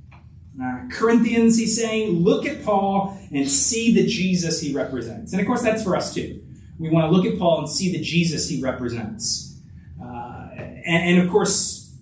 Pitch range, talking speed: 135-215 Hz, 185 wpm